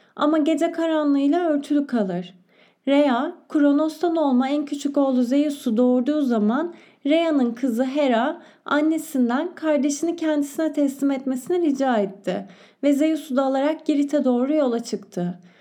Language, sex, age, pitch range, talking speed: Turkish, female, 30-49, 250-300 Hz, 125 wpm